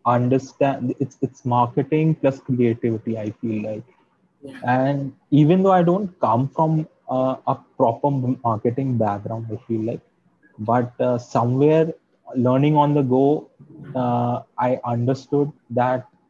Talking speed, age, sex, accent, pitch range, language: 130 wpm, 20-39, male, native, 115-140 Hz, Hindi